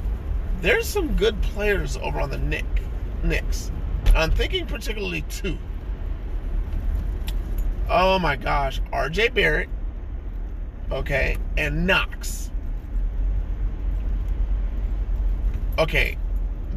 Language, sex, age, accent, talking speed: English, male, 30-49, American, 75 wpm